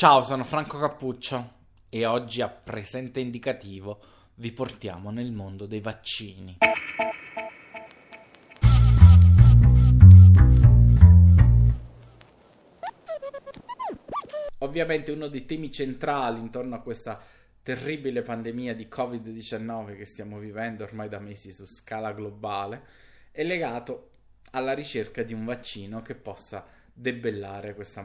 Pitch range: 110-135 Hz